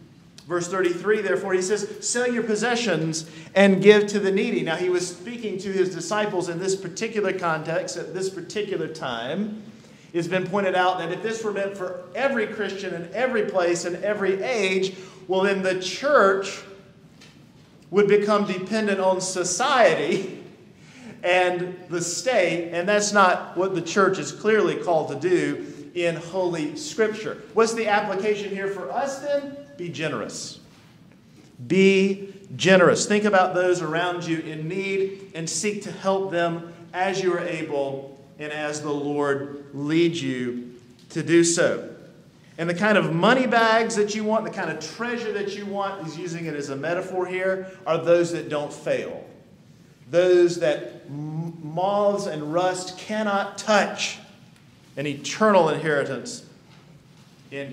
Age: 40-59